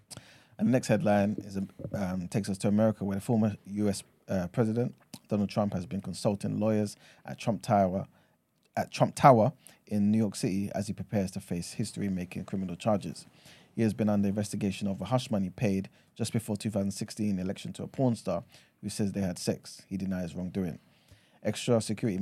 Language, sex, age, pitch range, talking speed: English, male, 30-49, 95-110 Hz, 185 wpm